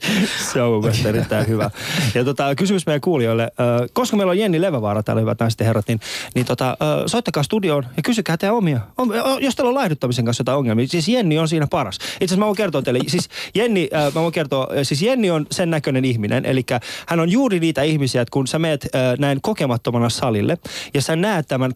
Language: Finnish